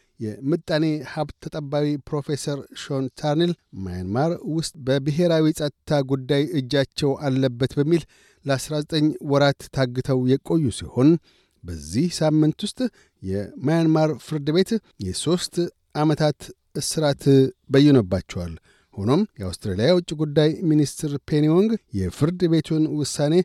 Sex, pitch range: male, 125-155 Hz